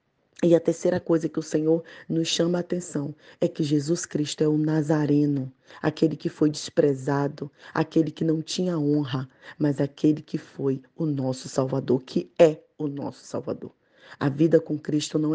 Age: 20-39